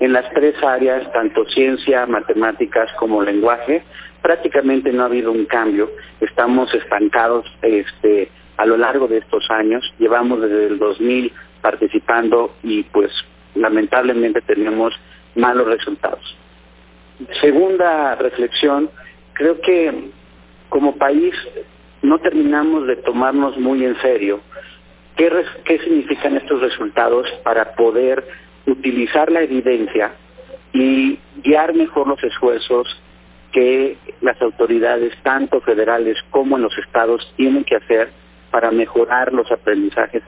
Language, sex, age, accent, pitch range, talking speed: Spanish, male, 50-69, Mexican, 110-155 Hz, 115 wpm